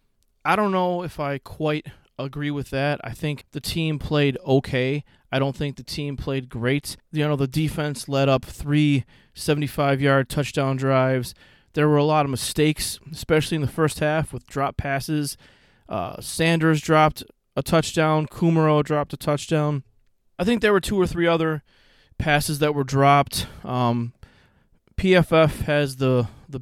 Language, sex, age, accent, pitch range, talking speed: English, male, 20-39, American, 130-155 Hz, 160 wpm